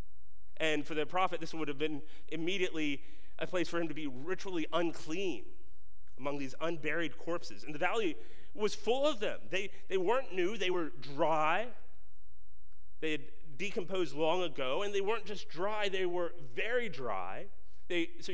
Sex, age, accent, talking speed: male, 30-49, American, 165 wpm